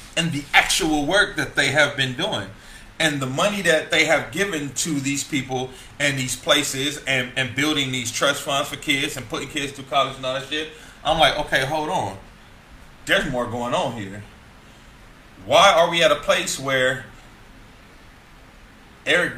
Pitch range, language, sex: 125-155 Hz, English, male